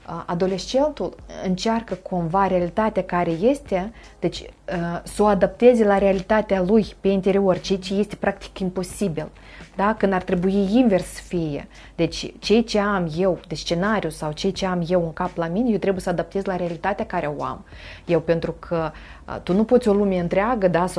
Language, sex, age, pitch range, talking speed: Romanian, female, 30-49, 170-205 Hz, 175 wpm